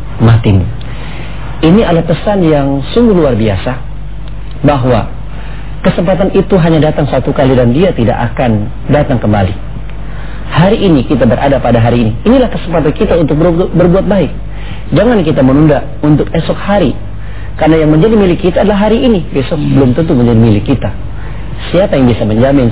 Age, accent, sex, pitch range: 40-59, Indonesian, male, 110-150 Hz